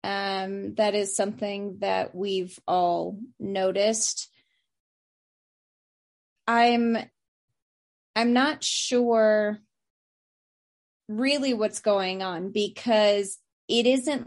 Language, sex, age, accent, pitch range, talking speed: English, female, 20-39, American, 195-235 Hz, 80 wpm